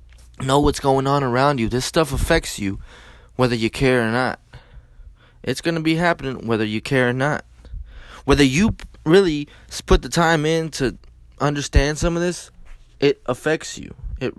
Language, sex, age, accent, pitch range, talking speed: English, male, 20-39, American, 105-145 Hz, 170 wpm